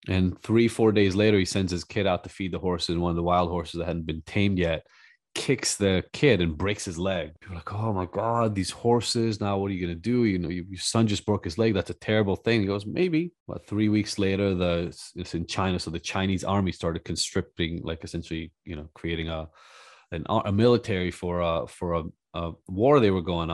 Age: 30-49